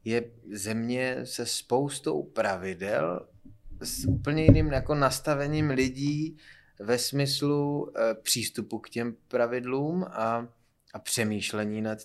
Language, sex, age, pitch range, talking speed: Czech, male, 20-39, 115-140 Hz, 110 wpm